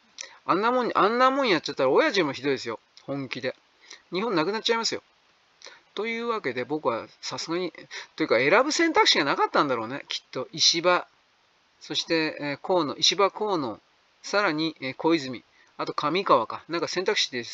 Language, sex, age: Japanese, male, 40-59